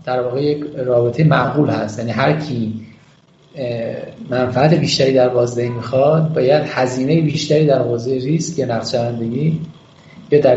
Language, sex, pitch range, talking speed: Persian, male, 120-160 Hz, 135 wpm